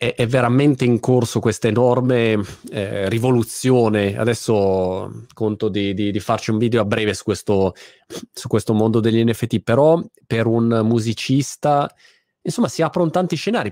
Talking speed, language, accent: 145 wpm, Italian, native